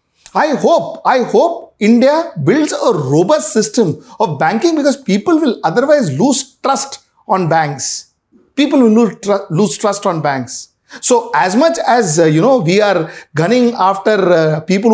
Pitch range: 155-220 Hz